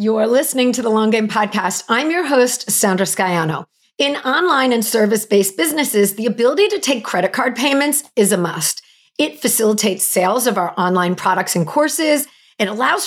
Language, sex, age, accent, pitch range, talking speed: English, female, 40-59, American, 200-285 Hz, 180 wpm